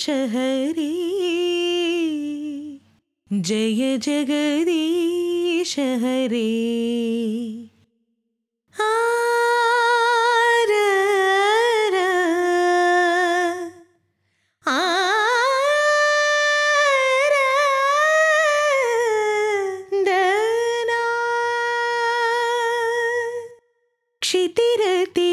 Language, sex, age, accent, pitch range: Telugu, female, 20-39, native, 305-470 Hz